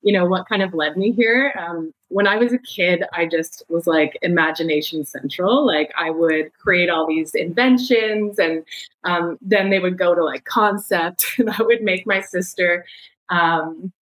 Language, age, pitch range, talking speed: English, 20-39, 165-200 Hz, 185 wpm